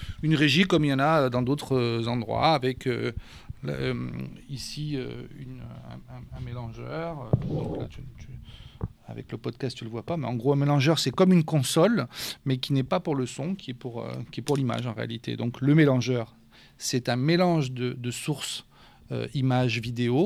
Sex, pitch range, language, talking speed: male, 120-140 Hz, French, 205 wpm